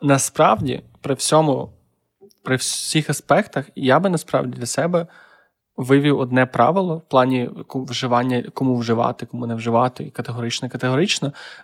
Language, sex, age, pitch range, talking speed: Ukrainian, male, 20-39, 125-140 Hz, 120 wpm